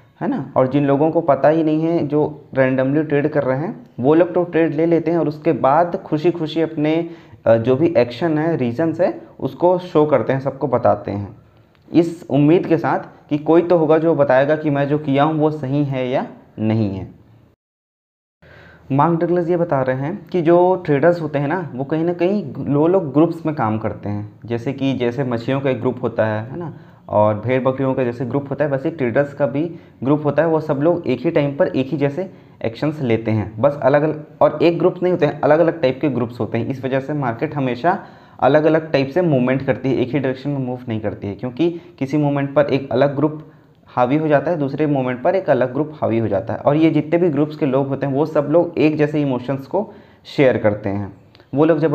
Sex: male